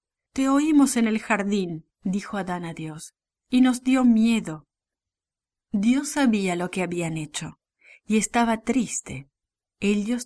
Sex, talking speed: female, 135 wpm